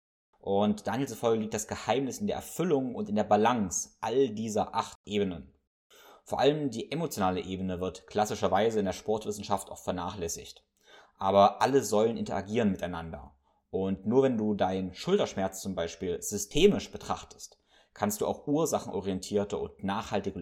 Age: 20-39